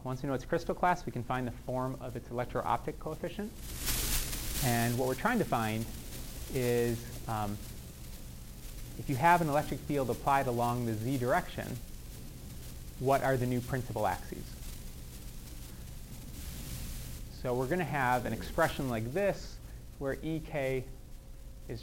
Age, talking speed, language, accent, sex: 30-49, 145 wpm, English, American, male